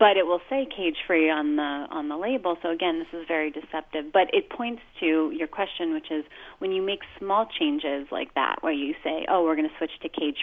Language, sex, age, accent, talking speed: English, female, 30-49, American, 240 wpm